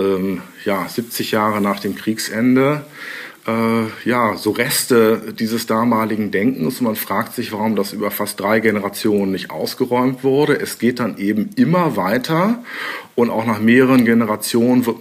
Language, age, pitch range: German, 50-69, 110-145 Hz